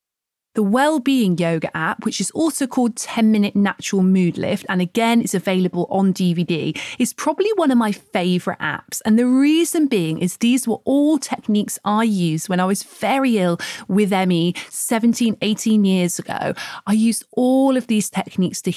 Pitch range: 180-245 Hz